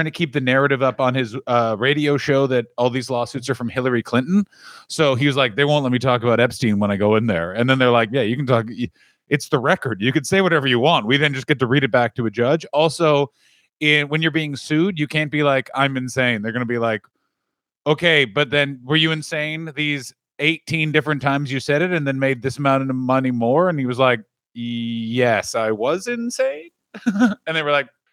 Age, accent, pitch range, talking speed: 30-49, American, 130-180 Hz, 235 wpm